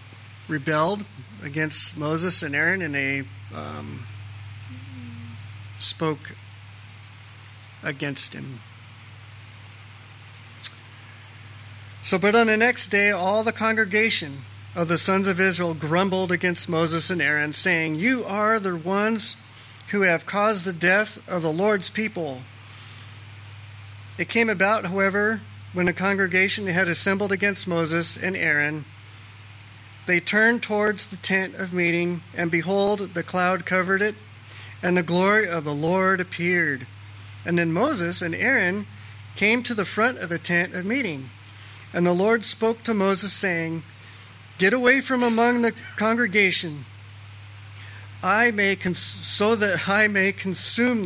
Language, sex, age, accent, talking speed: English, male, 40-59, American, 130 wpm